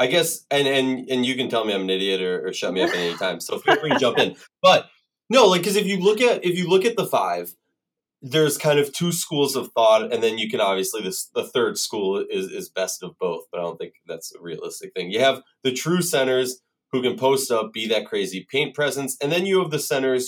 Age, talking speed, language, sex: 20-39, 265 wpm, English, male